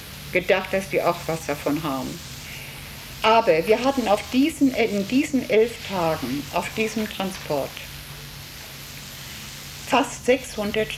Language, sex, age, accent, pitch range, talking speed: German, female, 60-79, German, 170-215 Hz, 115 wpm